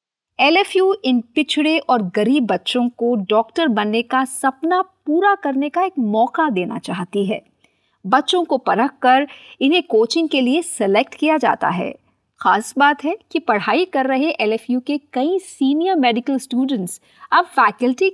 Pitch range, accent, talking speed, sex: 230-325 Hz, native, 150 wpm, female